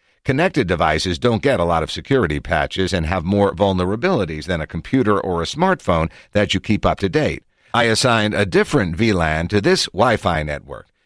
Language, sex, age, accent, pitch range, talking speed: English, male, 50-69, American, 90-110 Hz, 185 wpm